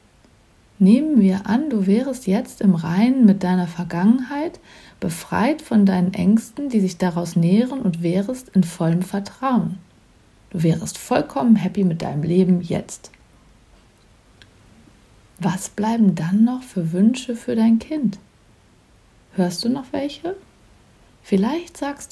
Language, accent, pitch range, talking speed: German, German, 175-230 Hz, 130 wpm